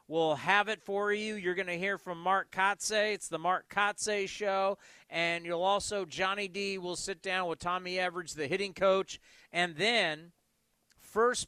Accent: American